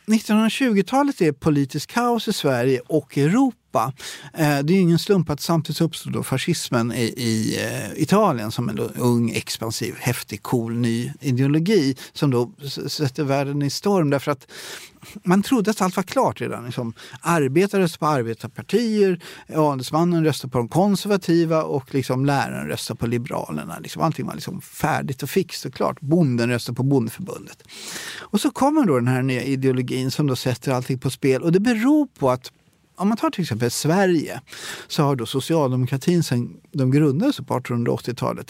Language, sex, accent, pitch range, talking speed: Swedish, male, native, 130-185 Hz, 155 wpm